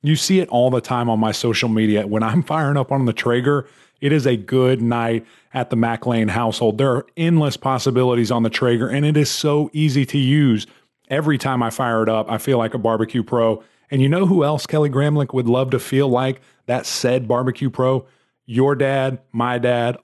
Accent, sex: American, male